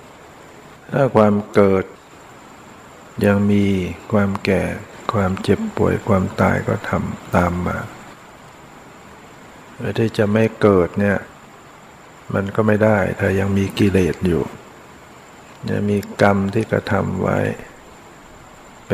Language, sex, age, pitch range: Thai, male, 60-79, 95-110 Hz